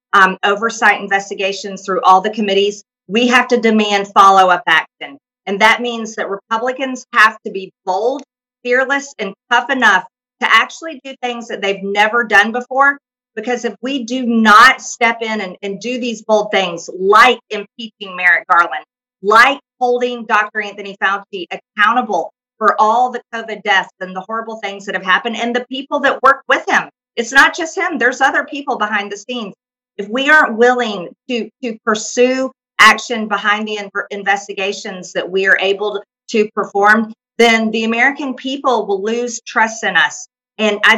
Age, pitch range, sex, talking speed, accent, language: 40-59, 195-250 Hz, female, 170 wpm, American, English